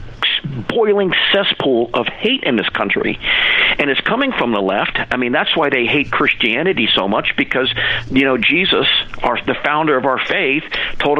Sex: male